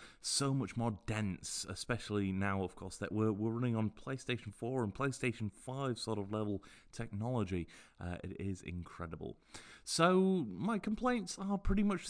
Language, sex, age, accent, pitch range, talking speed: English, male, 20-39, British, 105-140 Hz, 160 wpm